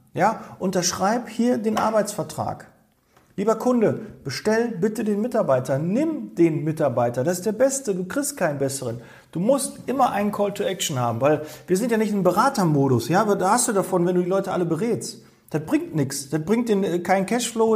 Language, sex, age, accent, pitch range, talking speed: German, male, 40-59, German, 135-200 Hz, 190 wpm